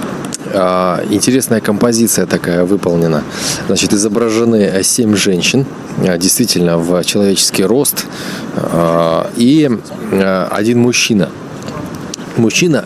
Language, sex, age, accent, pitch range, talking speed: Russian, male, 30-49, native, 90-110 Hz, 75 wpm